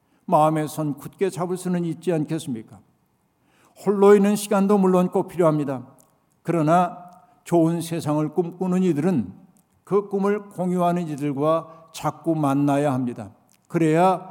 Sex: male